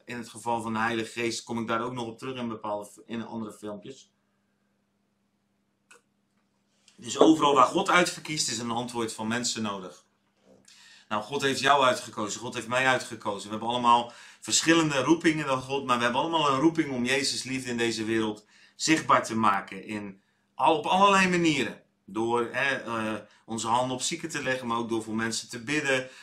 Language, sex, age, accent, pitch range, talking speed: Dutch, male, 30-49, Dutch, 110-130 Hz, 185 wpm